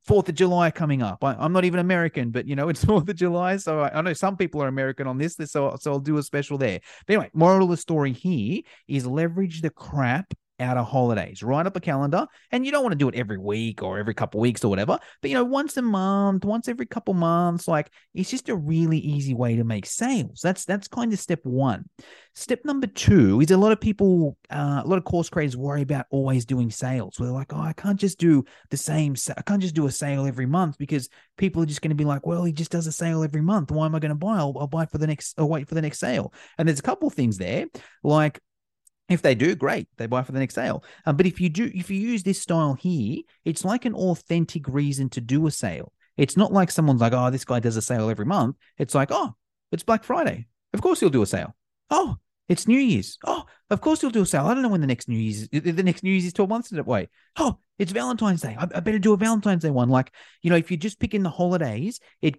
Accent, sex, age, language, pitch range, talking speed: Australian, male, 30-49, English, 135-190 Hz, 270 wpm